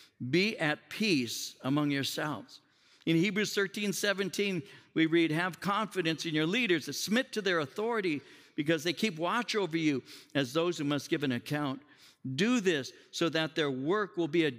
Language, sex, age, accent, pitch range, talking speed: English, male, 60-79, American, 145-185 Hz, 175 wpm